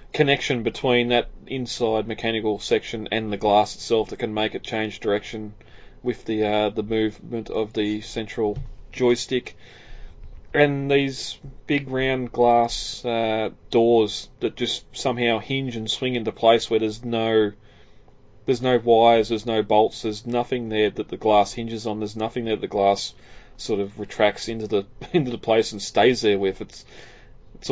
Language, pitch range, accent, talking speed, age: English, 105-120 Hz, Australian, 165 wpm, 20-39